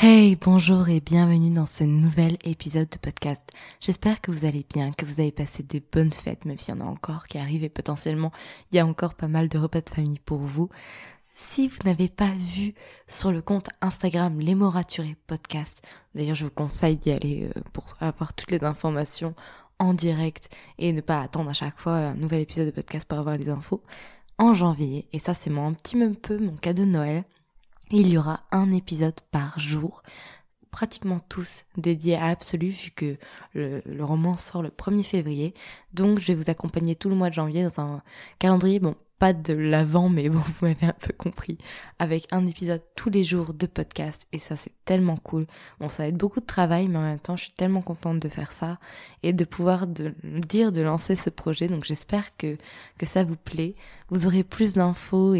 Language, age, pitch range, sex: French, 20-39, 155-185 Hz, female